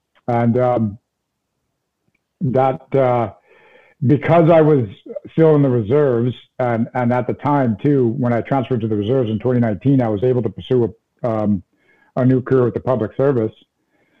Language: English